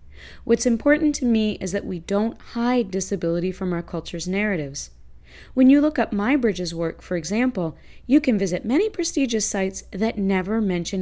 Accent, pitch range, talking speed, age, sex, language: American, 165-215 Hz, 175 wpm, 30-49, female, English